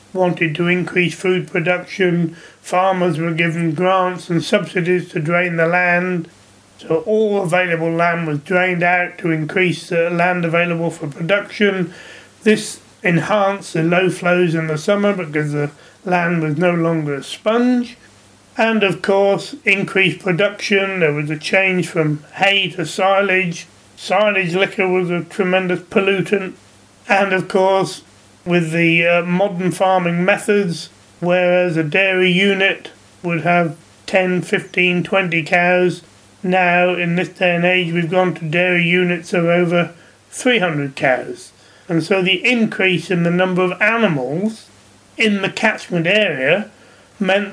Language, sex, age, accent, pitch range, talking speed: English, male, 30-49, British, 170-195 Hz, 140 wpm